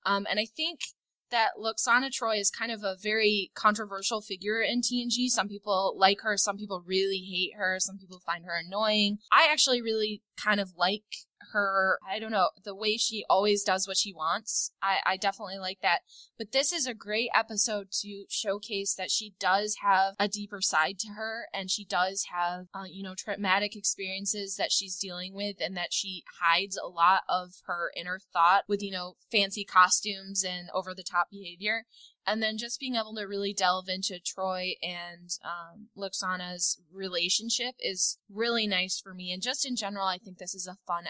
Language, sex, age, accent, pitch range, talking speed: English, female, 20-39, American, 180-215 Hz, 190 wpm